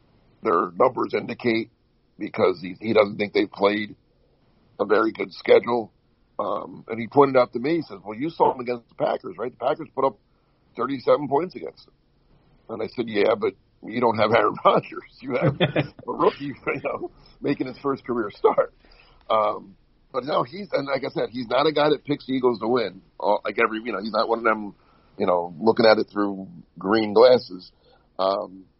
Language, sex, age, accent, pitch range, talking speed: English, male, 50-69, American, 115-150 Hz, 200 wpm